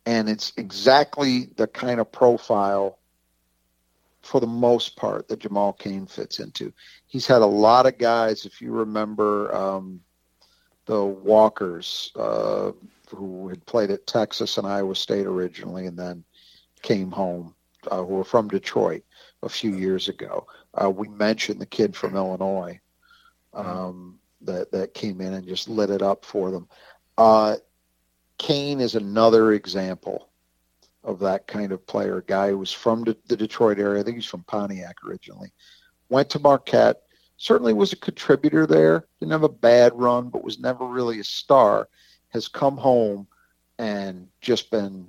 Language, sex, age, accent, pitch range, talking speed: English, male, 50-69, American, 95-115 Hz, 155 wpm